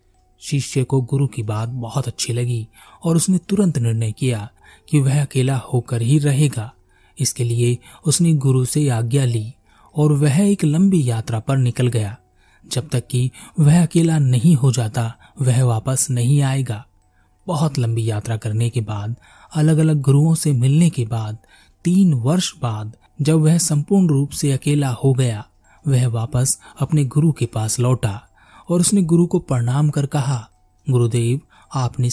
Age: 30-49